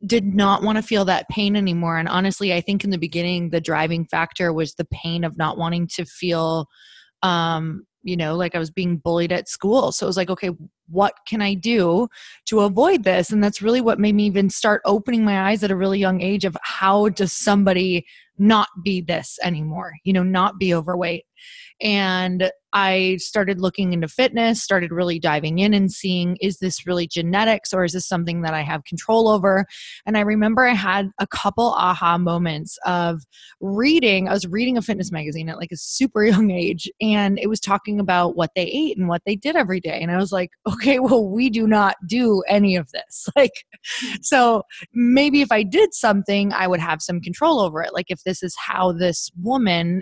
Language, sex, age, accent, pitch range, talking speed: English, female, 20-39, American, 175-210 Hz, 210 wpm